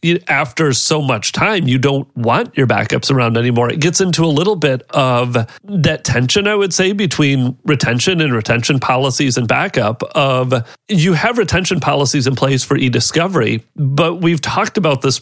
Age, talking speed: 30-49, 175 wpm